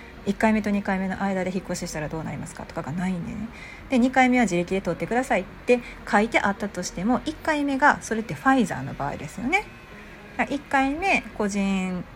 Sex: female